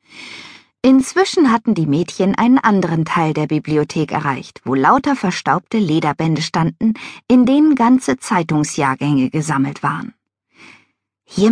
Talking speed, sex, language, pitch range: 115 wpm, female, German, 155-255 Hz